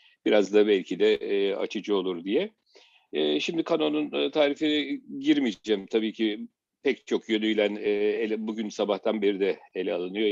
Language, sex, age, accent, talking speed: Turkish, male, 50-69, native, 130 wpm